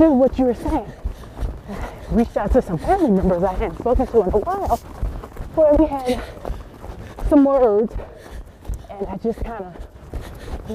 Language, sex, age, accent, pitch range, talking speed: English, female, 30-49, American, 195-275 Hz, 160 wpm